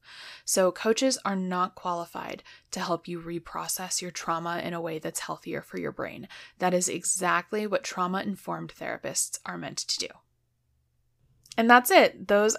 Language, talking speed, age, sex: English, 155 wpm, 20-39, female